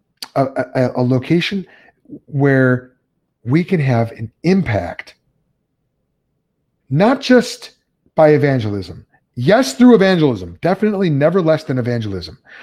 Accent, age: American, 30-49